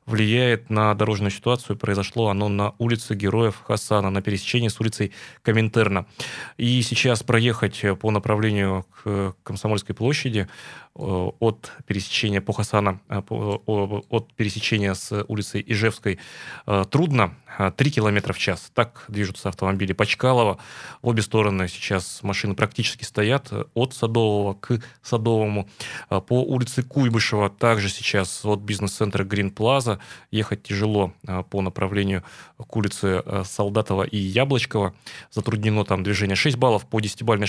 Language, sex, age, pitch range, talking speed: Russian, male, 20-39, 100-115 Hz, 120 wpm